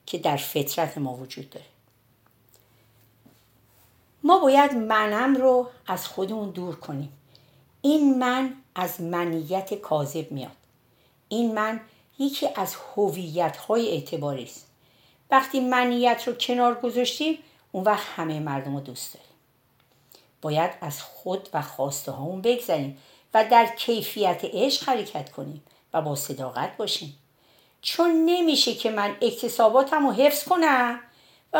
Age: 50-69